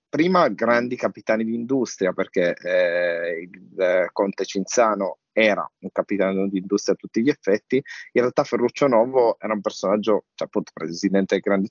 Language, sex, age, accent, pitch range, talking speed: Italian, male, 20-39, native, 95-120 Hz, 165 wpm